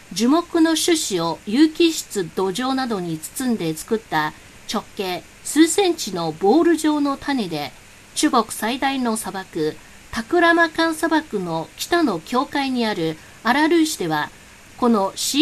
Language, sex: Japanese, female